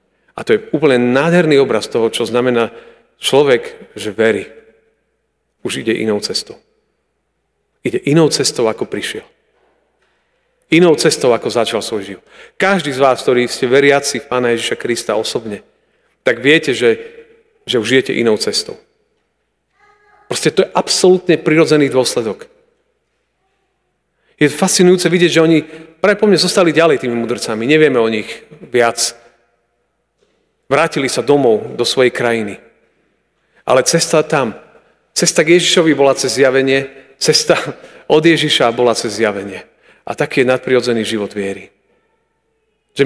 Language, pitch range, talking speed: Slovak, 125-175 Hz, 130 wpm